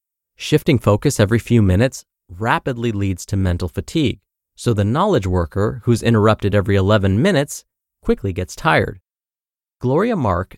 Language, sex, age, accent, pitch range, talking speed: English, male, 30-49, American, 100-145 Hz, 135 wpm